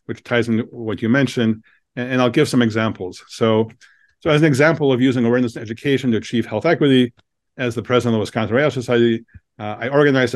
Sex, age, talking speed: male, 40-59, 210 wpm